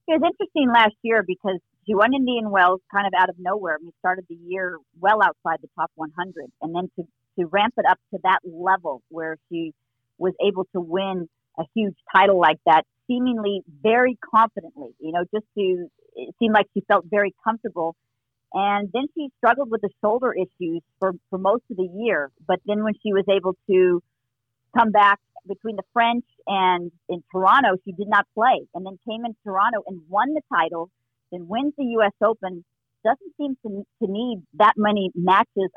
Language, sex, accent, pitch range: English, female, American, 175-210 Hz